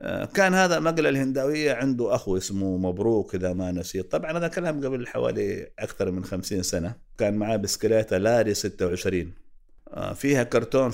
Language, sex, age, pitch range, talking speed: Arabic, male, 50-69, 95-135 Hz, 155 wpm